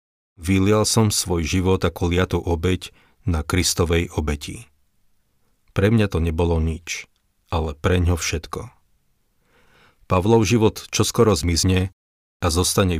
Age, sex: 40-59, male